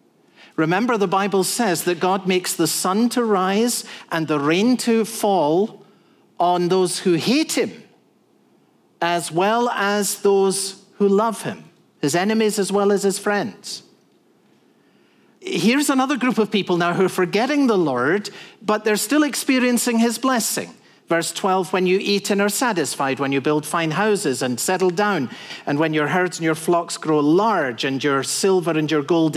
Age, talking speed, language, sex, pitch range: 50-69, 170 wpm, English, male, 160-205 Hz